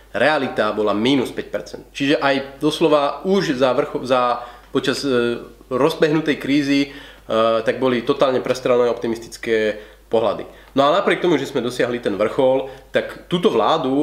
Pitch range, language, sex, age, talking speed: 115-140 Hz, Slovak, male, 30-49, 145 wpm